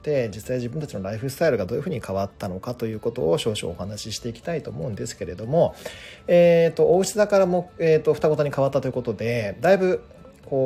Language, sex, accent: Japanese, male, native